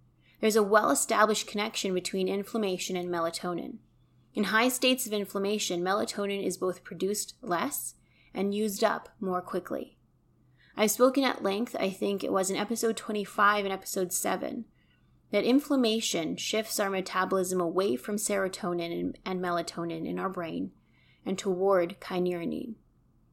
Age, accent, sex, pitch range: 20-39, American, female, 180-215 Hz